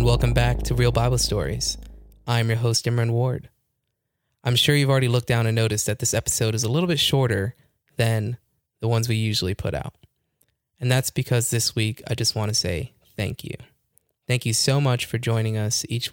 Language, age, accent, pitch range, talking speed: English, 20-39, American, 110-125 Hz, 200 wpm